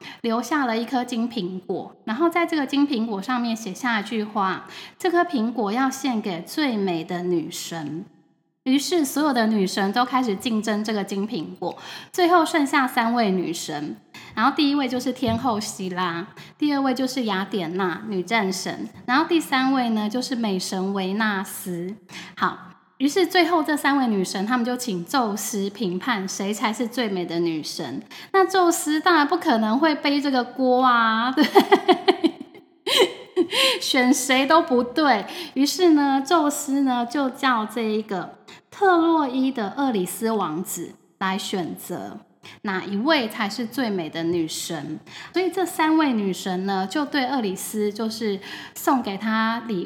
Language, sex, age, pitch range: Chinese, female, 10-29, 195-285 Hz